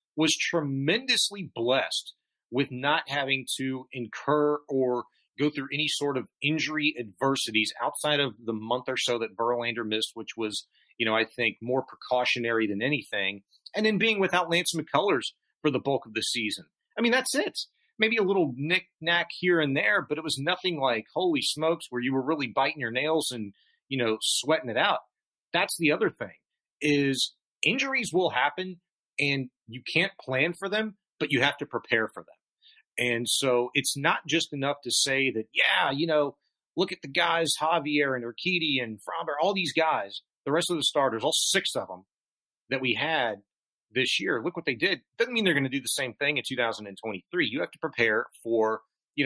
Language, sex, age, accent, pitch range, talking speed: English, male, 40-59, American, 120-160 Hz, 190 wpm